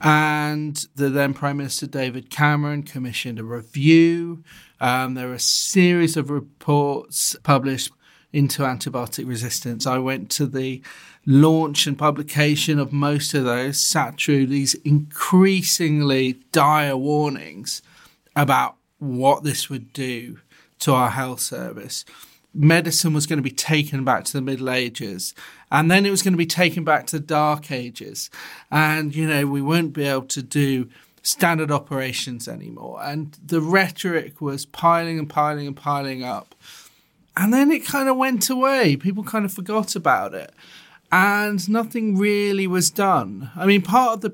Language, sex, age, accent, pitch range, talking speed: English, male, 30-49, British, 135-165 Hz, 160 wpm